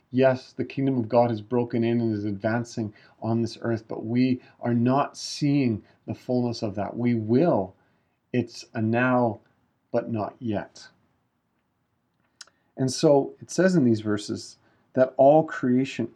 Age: 40-59